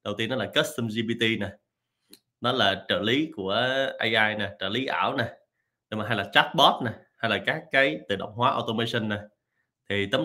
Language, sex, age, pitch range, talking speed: Vietnamese, male, 20-39, 105-130 Hz, 195 wpm